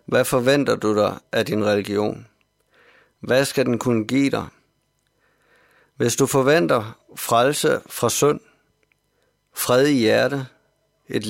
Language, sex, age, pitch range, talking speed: Danish, male, 50-69, 110-135 Hz, 120 wpm